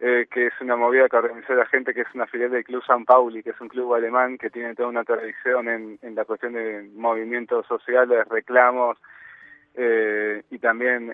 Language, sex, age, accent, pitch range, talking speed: Spanish, male, 20-39, Argentinian, 120-130 Hz, 205 wpm